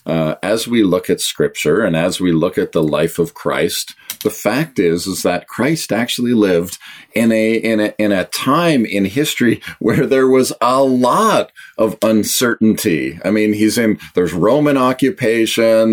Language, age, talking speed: English, 40-59, 175 wpm